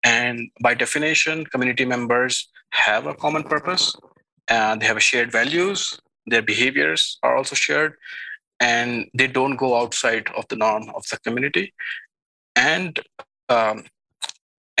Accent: Indian